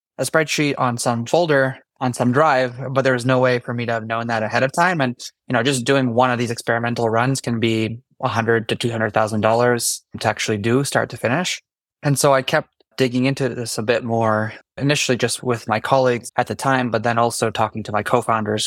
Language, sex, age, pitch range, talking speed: English, male, 20-39, 115-130 Hz, 220 wpm